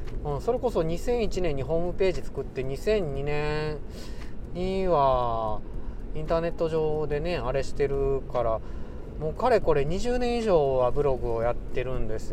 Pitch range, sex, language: 120-195 Hz, male, Japanese